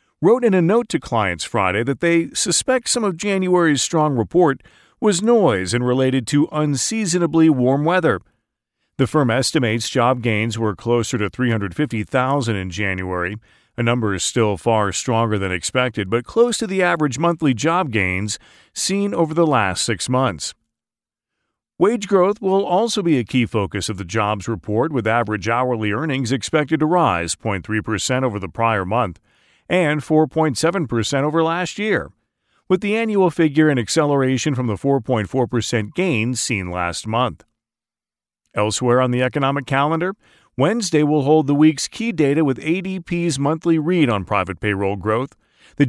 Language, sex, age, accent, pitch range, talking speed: English, male, 40-59, American, 110-165 Hz, 155 wpm